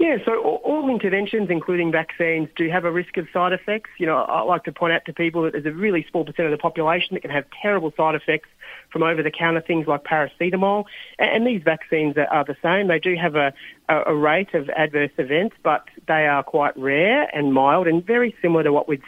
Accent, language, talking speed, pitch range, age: Australian, English, 220 wpm, 150-180 Hz, 40-59